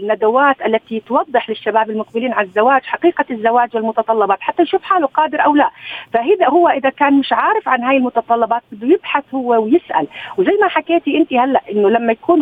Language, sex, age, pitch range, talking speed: Arabic, female, 40-59, 220-305 Hz, 180 wpm